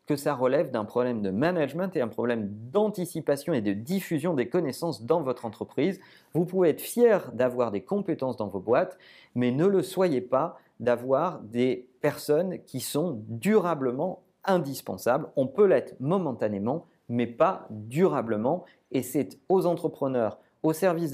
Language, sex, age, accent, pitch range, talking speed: French, male, 40-59, French, 125-185 Hz, 150 wpm